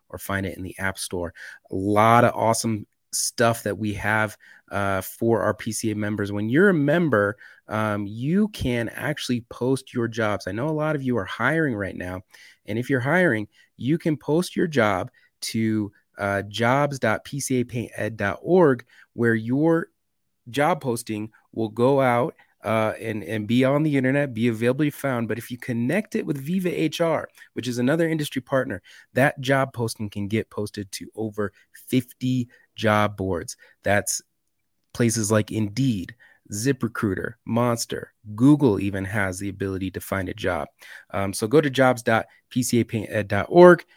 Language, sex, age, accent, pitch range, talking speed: English, male, 30-49, American, 105-130 Hz, 155 wpm